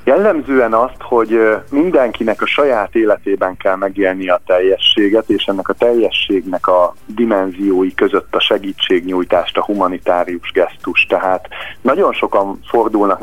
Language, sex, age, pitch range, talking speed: Hungarian, male, 30-49, 95-135 Hz, 125 wpm